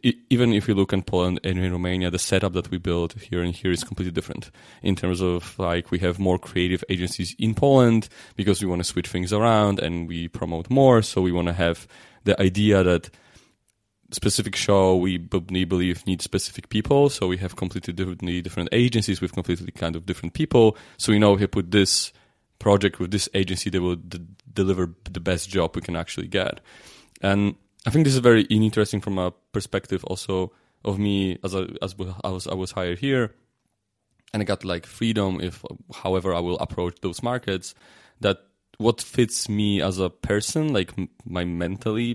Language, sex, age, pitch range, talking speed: English, male, 30-49, 90-110 Hz, 190 wpm